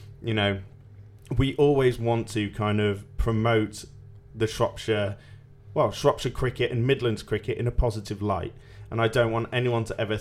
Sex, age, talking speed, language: male, 30-49, 165 wpm, English